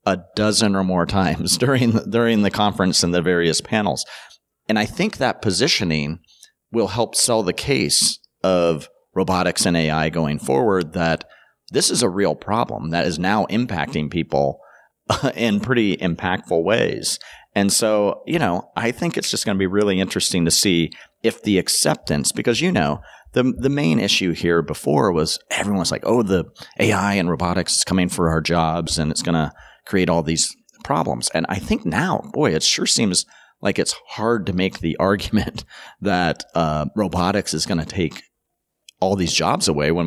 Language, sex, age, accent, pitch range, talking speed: English, male, 40-59, American, 80-100 Hz, 180 wpm